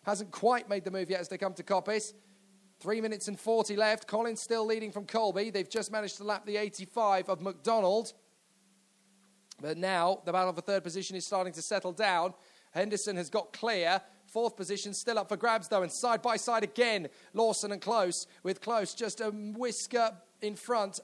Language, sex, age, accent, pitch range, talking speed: English, male, 30-49, British, 195-240 Hz, 195 wpm